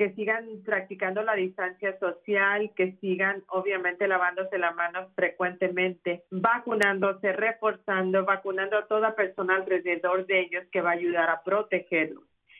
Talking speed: 135 wpm